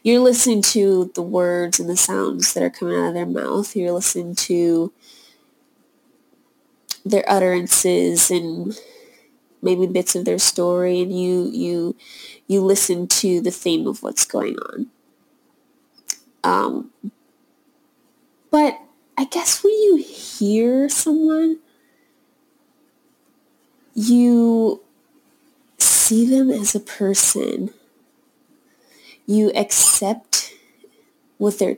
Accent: American